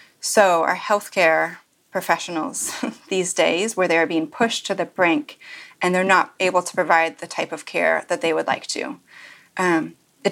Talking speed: 180 wpm